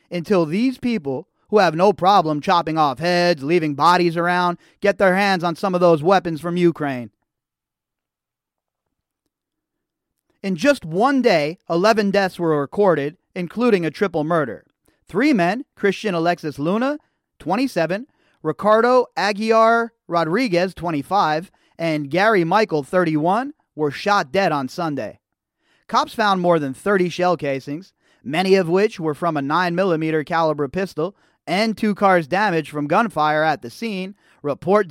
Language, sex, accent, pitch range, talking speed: English, male, American, 160-200 Hz, 140 wpm